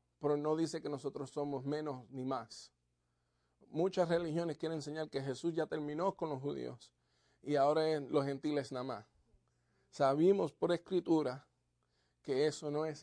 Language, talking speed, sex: English, 150 wpm, male